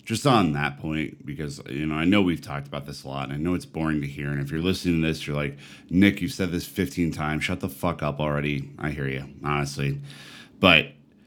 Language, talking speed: English, 245 wpm